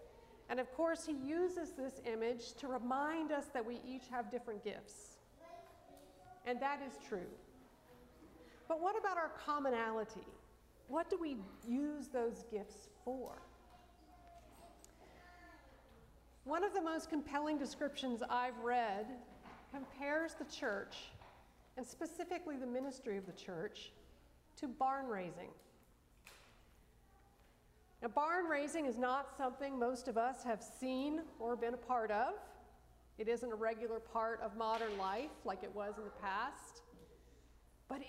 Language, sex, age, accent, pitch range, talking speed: English, female, 50-69, American, 220-295 Hz, 130 wpm